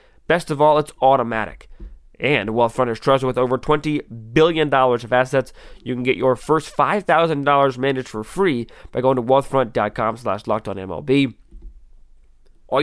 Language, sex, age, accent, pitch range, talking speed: English, male, 20-39, American, 120-145 Hz, 145 wpm